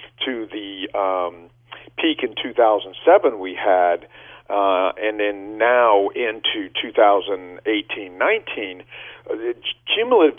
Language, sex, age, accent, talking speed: English, male, 50-69, American, 135 wpm